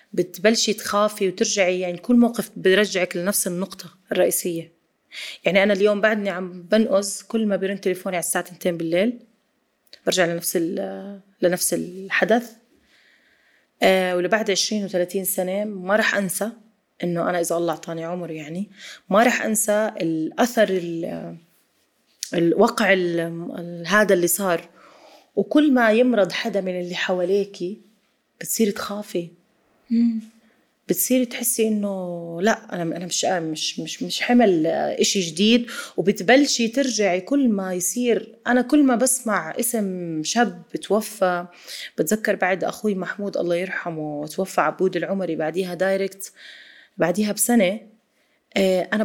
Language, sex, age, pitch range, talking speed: Arabic, female, 30-49, 180-220 Hz, 120 wpm